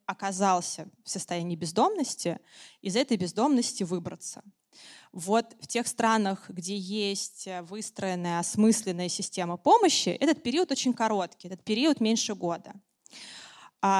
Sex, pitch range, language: female, 190-235 Hz, Russian